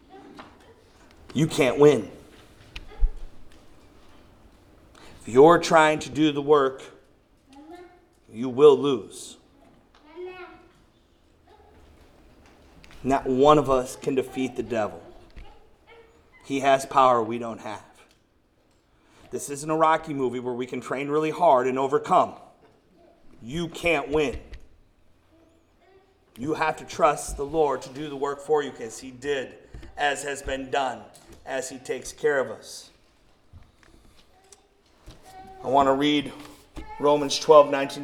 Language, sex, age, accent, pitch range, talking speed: English, male, 40-59, American, 140-225 Hz, 120 wpm